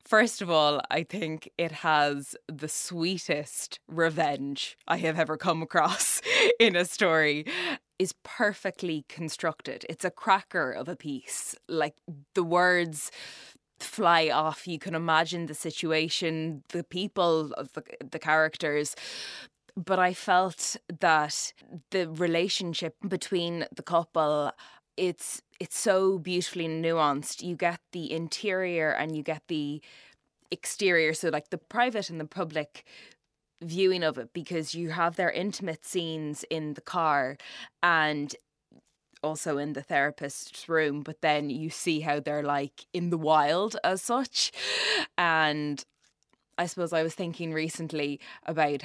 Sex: female